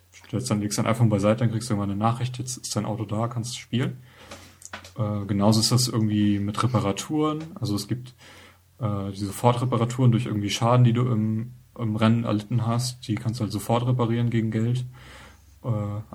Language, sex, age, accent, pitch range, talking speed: German, male, 30-49, German, 105-120 Hz, 185 wpm